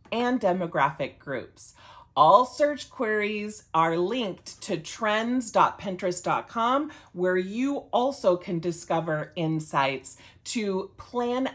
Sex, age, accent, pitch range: female, 40-59, American, 150-215 Hz